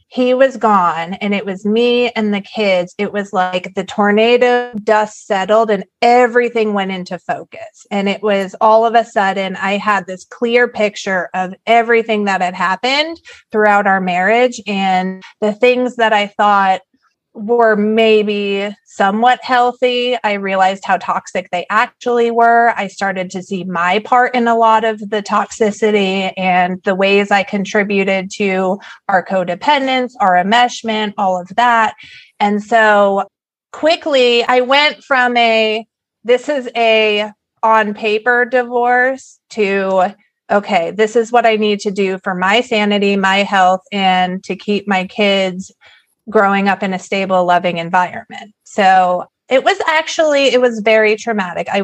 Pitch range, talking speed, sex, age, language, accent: 195-235 Hz, 155 wpm, female, 30-49, English, American